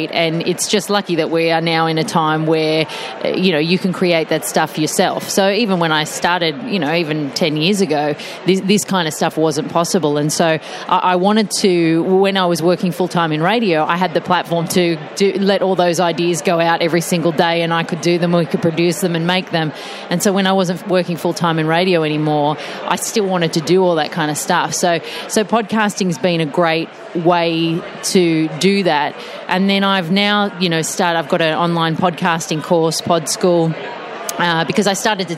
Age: 30-49